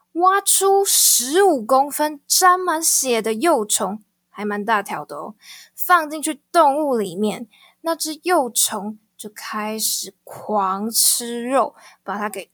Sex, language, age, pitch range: female, Chinese, 20-39, 215-285 Hz